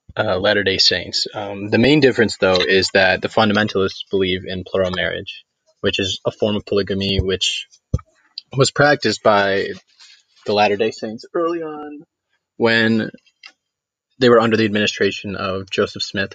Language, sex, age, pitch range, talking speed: English, male, 20-39, 100-125 Hz, 155 wpm